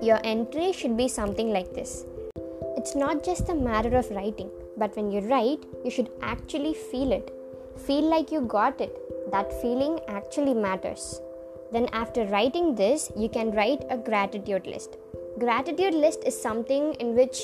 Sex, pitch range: male, 210-270 Hz